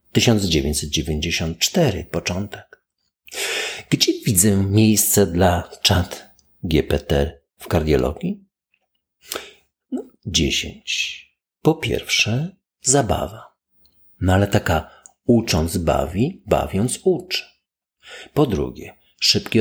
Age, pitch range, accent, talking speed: 50-69, 90-130 Hz, native, 75 wpm